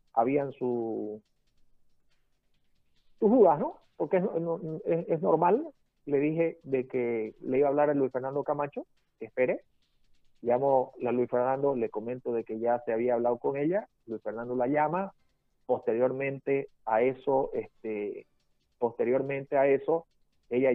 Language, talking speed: Spanish, 140 wpm